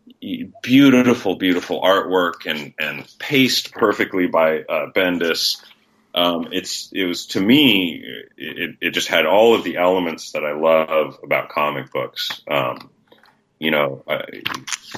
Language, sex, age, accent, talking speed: English, male, 30-49, American, 135 wpm